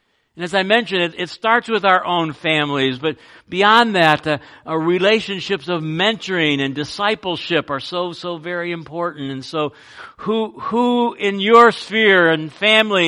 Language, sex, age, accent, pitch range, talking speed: English, male, 60-79, American, 105-160 Hz, 160 wpm